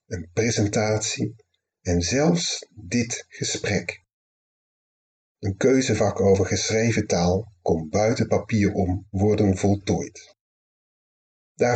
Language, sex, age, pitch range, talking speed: Dutch, male, 40-59, 90-110 Hz, 90 wpm